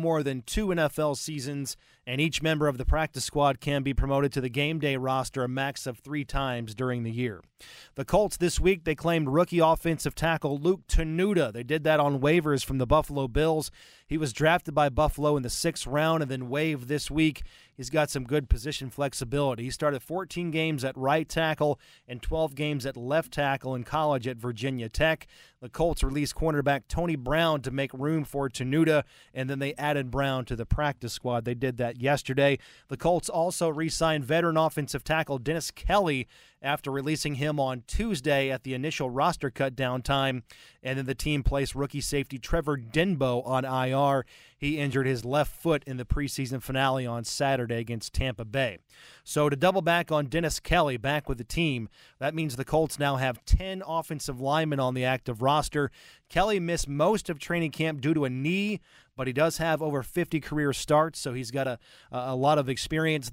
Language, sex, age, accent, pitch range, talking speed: English, male, 30-49, American, 130-160 Hz, 195 wpm